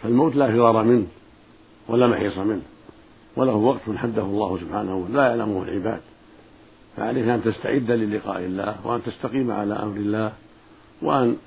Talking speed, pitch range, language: 140 wpm, 105-120 Hz, Arabic